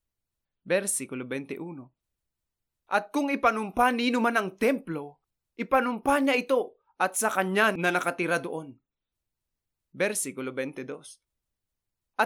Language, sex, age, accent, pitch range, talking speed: English, male, 20-39, Filipino, 170-235 Hz, 85 wpm